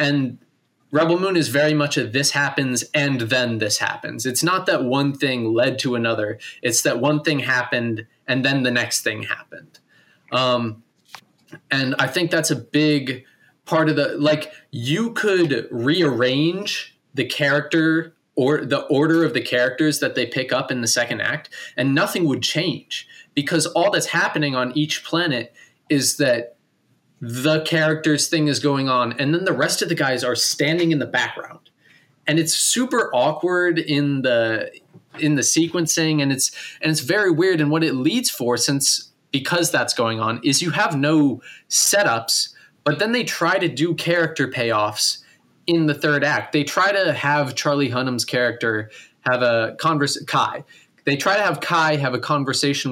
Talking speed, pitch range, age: 175 wpm, 125-160 Hz, 20-39